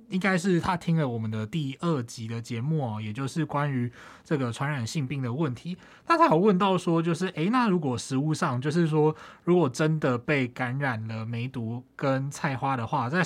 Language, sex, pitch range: Chinese, male, 120-155 Hz